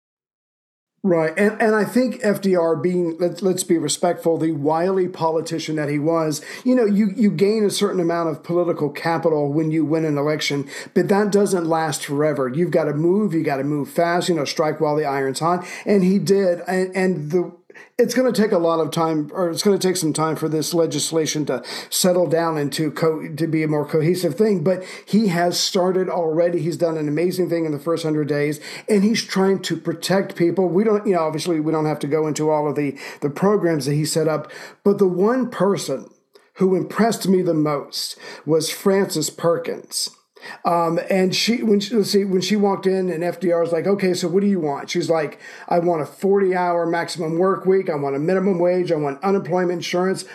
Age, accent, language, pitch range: 50-69, American, English, 160-190 Hz